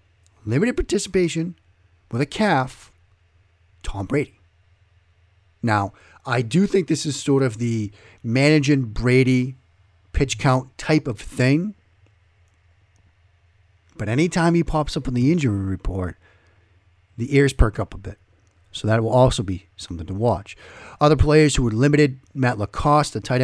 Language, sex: English, male